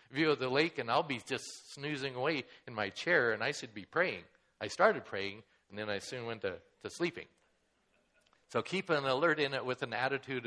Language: English